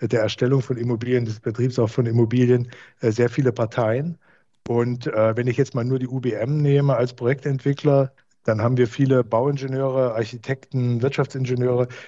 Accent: German